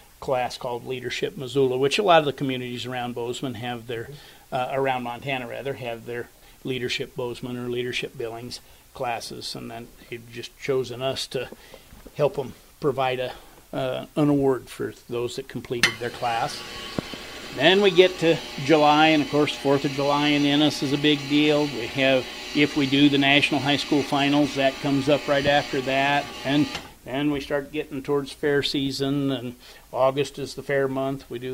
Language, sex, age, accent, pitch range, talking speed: English, male, 50-69, American, 125-145 Hz, 180 wpm